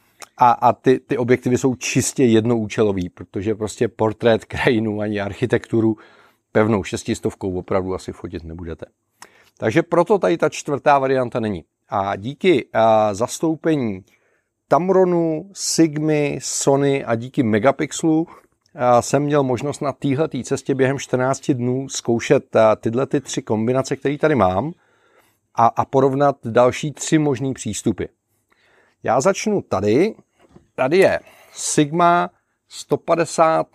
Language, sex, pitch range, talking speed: Czech, male, 115-150 Hz, 120 wpm